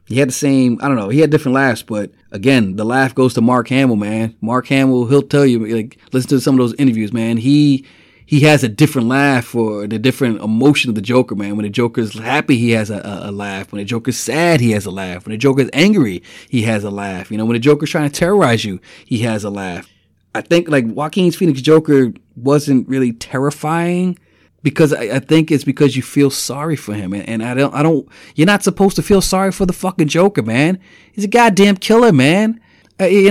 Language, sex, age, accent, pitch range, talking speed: English, male, 30-49, American, 115-155 Hz, 230 wpm